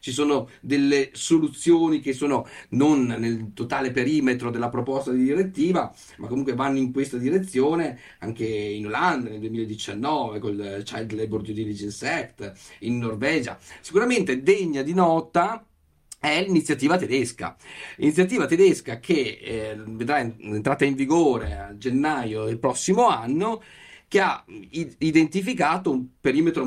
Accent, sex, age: native, male, 40-59